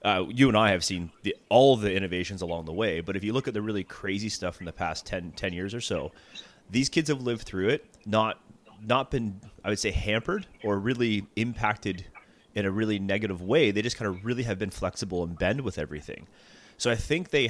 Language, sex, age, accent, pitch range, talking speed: English, male, 30-49, American, 95-115 Hz, 230 wpm